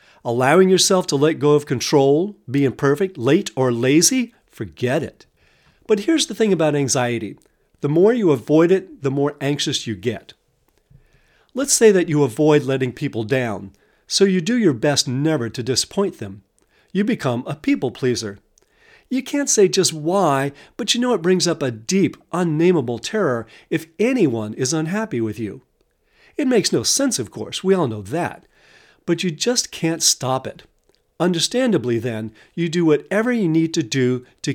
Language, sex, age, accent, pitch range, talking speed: English, male, 50-69, American, 130-190 Hz, 170 wpm